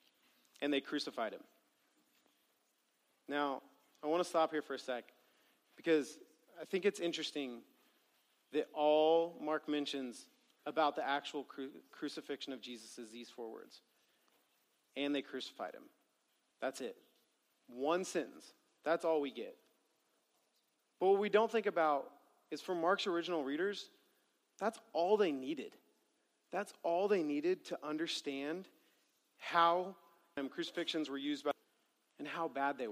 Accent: American